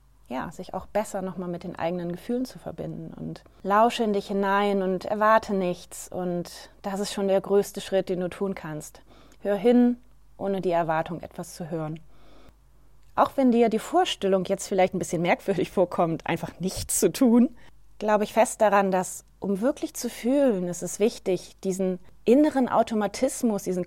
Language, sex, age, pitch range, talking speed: German, female, 30-49, 185-245 Hz, 175 wpm